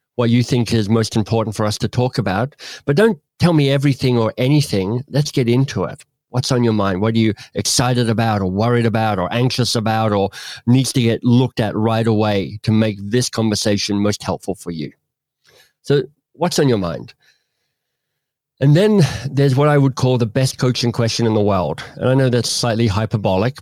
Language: English